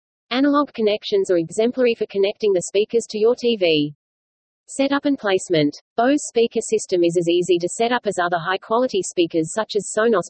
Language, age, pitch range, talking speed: English, 30-49, 175-225 Hz, 175 wpm